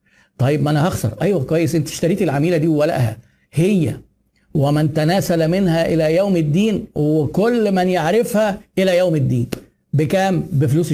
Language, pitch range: Arabic, 135-170 Hz